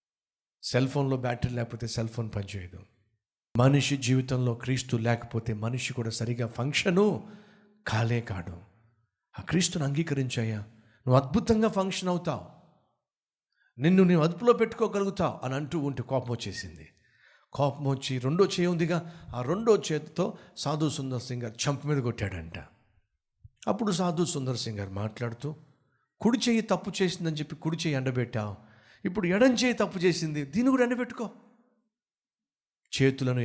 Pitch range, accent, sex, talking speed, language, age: 115-175 Hz, native, male, 115 wpm, Telugu, 50-69